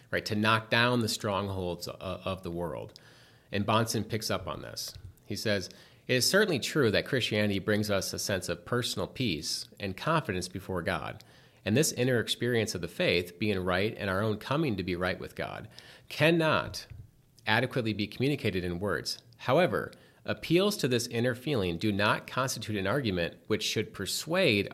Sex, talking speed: male, 175 wpm